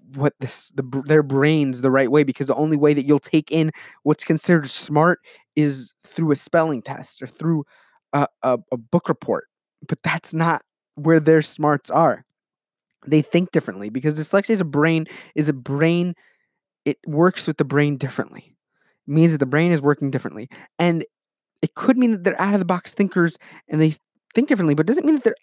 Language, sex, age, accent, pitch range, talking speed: English, male, 20-39, American, 130-170 Hz, 195 wpm